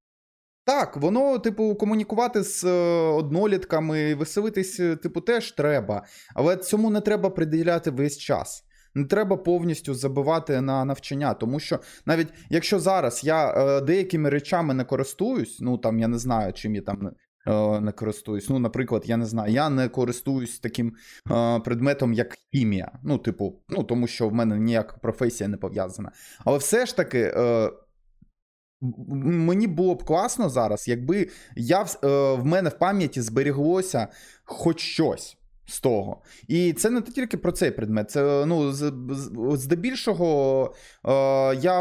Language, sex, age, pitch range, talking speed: Ukrainian, male, 20-39, 120-175 Hz, 140 wpm